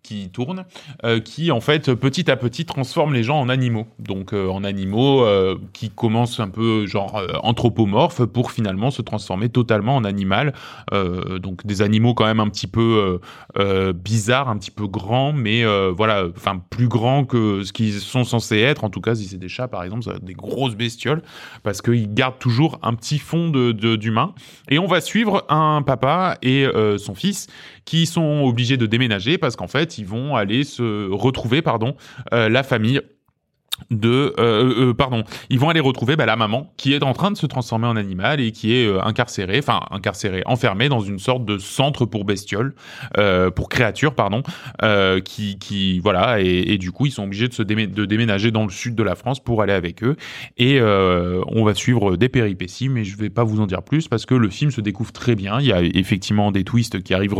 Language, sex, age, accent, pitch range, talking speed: French, male, 20-39, French, 105-130 Hz, 215 wpm